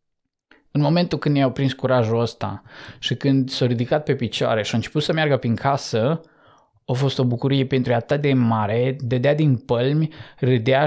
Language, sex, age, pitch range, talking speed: Romanian, male, 20-39, 130-165 Hz, 190 wpm